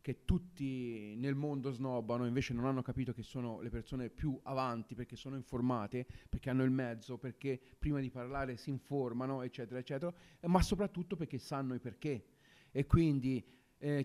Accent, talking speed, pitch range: native, 170 wpm, 130-155 Hz